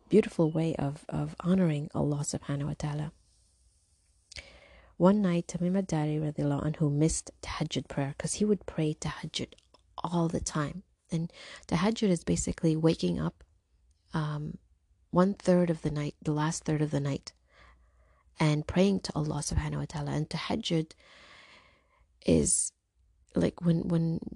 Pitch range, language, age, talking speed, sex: 140-175 Hz, English, 30-49, 140 wpm, female